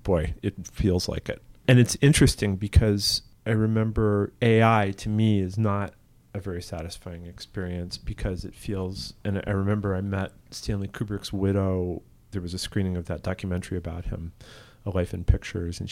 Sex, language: male, English